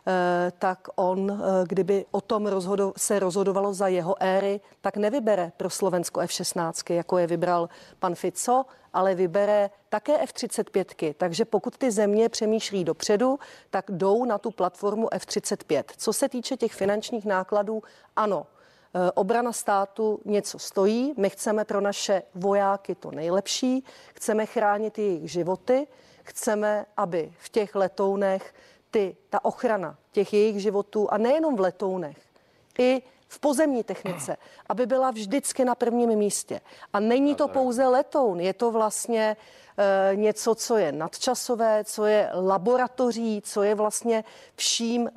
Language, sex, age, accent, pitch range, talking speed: Czech, female, 40-59, native, 190-235 Hz, 135 wpm